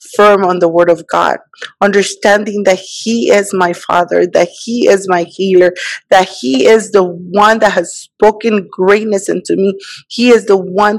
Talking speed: 175 wpm